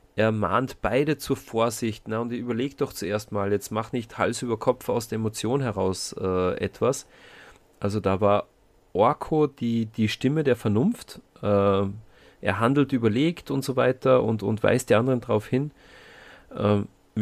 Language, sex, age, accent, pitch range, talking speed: German, male, 30-49, German, 105-130 Hz, 165 wpm